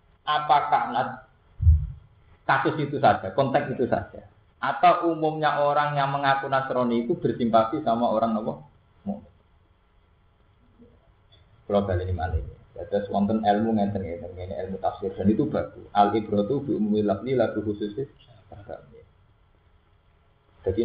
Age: 20-39